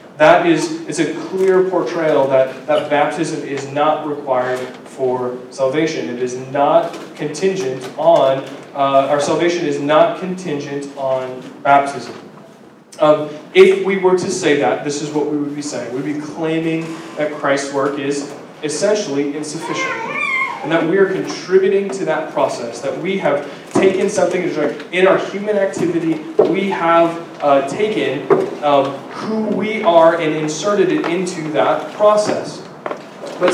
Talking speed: 145 wpm